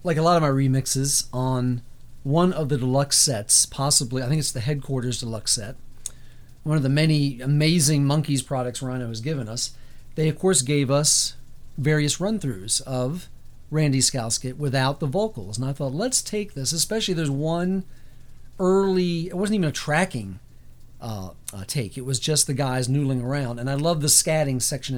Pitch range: 125-160 Hz